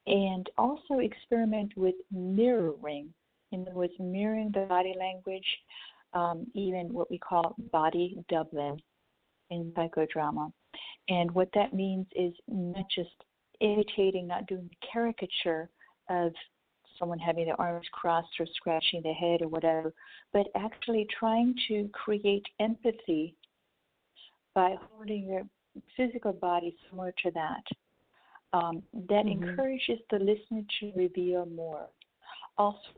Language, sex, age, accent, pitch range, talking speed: English, female, 50-69, American, 175-215 Hz, 125 wpm